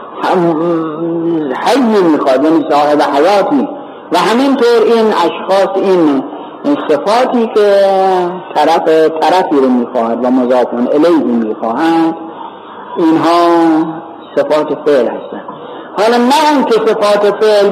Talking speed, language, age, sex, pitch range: 100 wpm, Persian, 50-69, male, 165-235 Hz